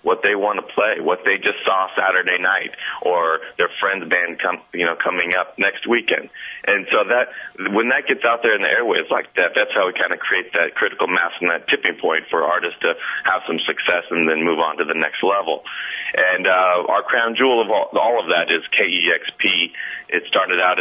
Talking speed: 220 wpm